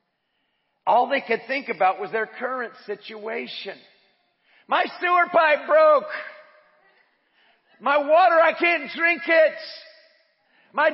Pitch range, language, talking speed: 210-300 Hz, English, 110 wpm